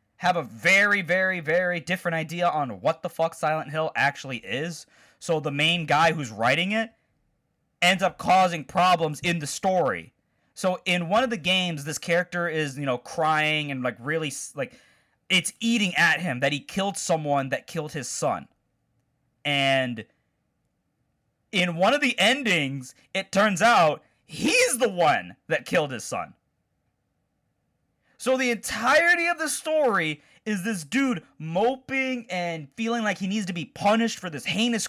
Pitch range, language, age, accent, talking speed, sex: 150-210 Hz, English, 20-39, American, 160 wpm, male